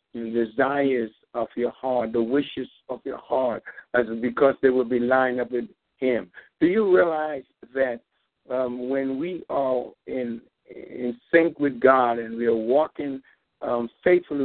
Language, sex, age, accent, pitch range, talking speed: English, male, 60-79, American, 130-160 Hz, 160 wpm